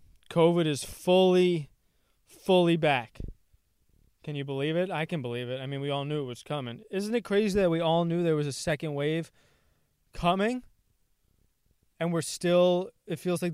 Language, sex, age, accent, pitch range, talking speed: English, male, 20-39, American, 125-170 Hz, 175 wpm